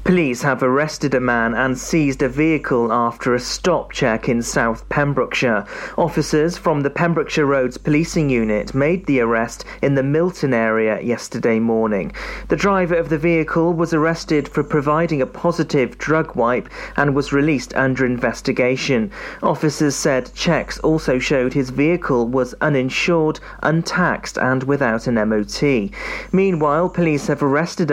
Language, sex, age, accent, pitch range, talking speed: English, male, 40-59, British, 125-165 Hz, 145 wpm